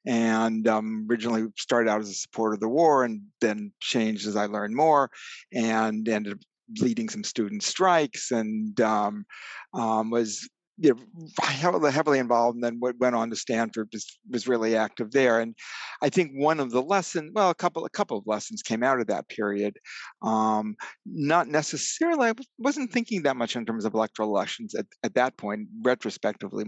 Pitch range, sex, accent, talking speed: 110-140 Hz, male, American, 180 wpm